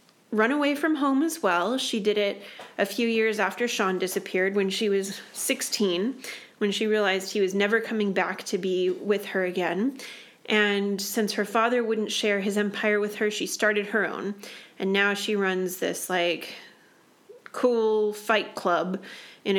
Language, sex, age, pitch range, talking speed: English, female, 30-49, 185-215 Hz, 170 wpm